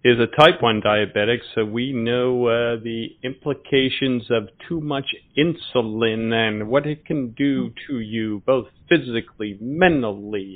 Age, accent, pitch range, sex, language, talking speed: 40-59, American, 110-130 Hz, male, English, 140 wpm